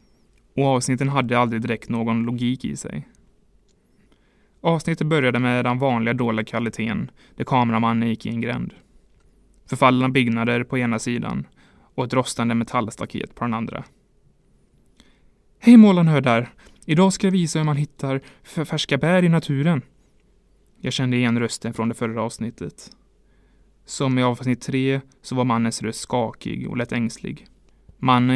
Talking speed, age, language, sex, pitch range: 145 wpm, 20-39, English, male, 115-135 Hz